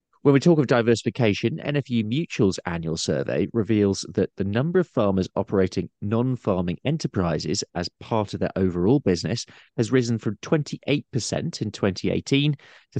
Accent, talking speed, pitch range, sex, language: British, 145 wpm, 90-130 Hz, male, English